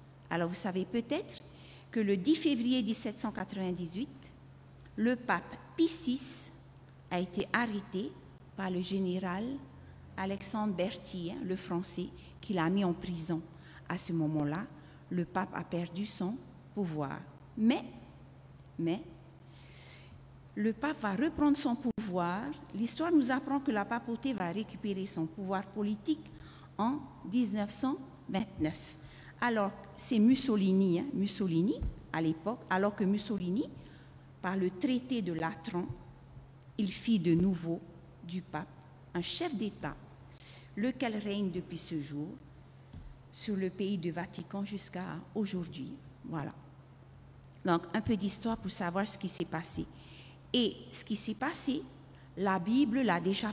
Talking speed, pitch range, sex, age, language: 125 wpm, 160-215 Hz, female, 50-69, French